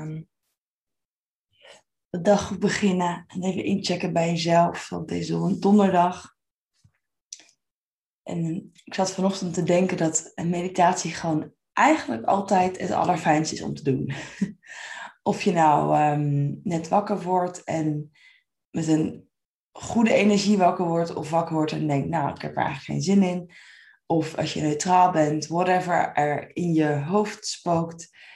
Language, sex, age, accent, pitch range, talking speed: Dutch, female, 20-39, Dutch, 150-190 Hz, 140 wpm